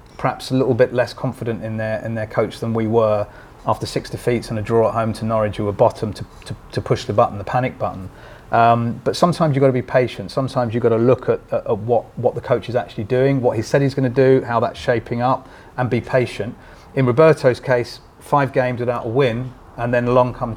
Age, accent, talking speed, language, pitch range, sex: 30-49, British, 250 wpm, English, 110-125 Hz, male